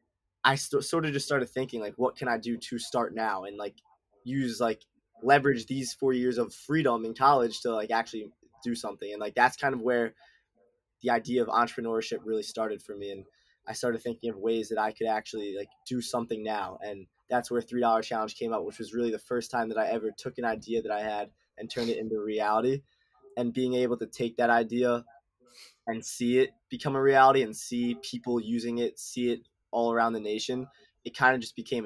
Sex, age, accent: male, 20-39, American